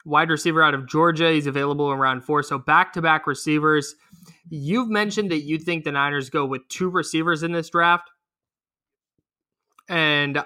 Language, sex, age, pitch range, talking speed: English, male, 20-39, 140-170 Hz, 160 wpm